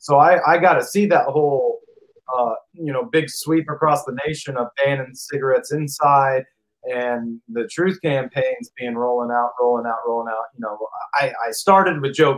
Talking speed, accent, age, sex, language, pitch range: 185 wpm, American, 30-49, male, English, 135-175 Hz